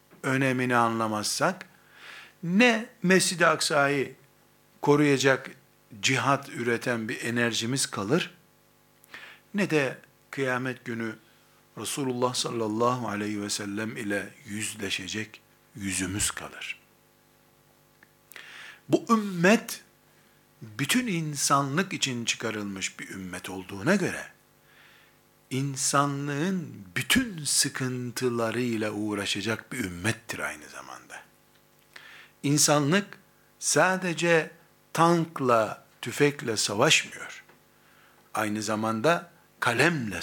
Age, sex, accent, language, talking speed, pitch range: 60-79, male, native, Turkish, 75 wpm, 115-170 Hz